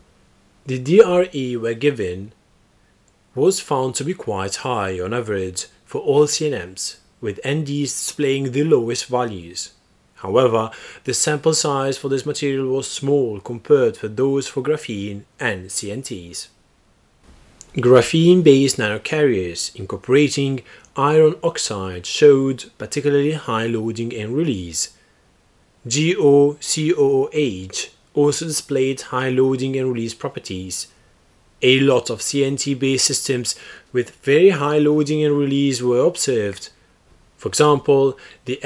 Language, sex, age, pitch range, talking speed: English, male, 30-49, 115-145 Hz, 115 wpm